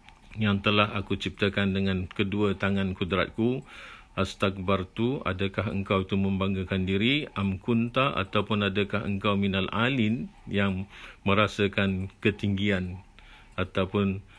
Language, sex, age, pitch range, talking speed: Malay, male, 50-69, 95-105 Hz, 100 wpm